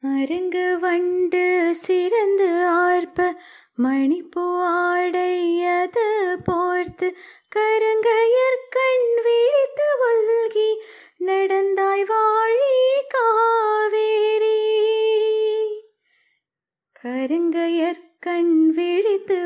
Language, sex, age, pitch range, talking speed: Tamil, female, 20-39, 340-435 Hz, 45 wpm